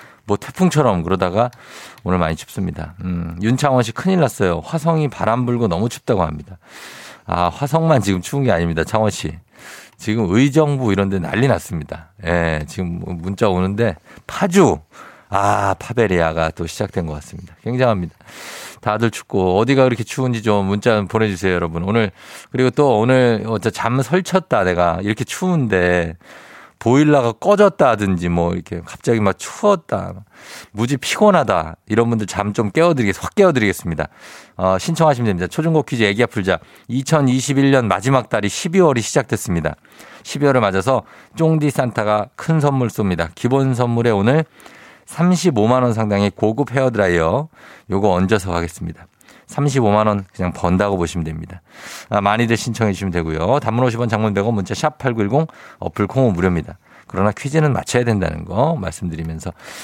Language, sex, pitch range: Korean, male, 90-130 Hz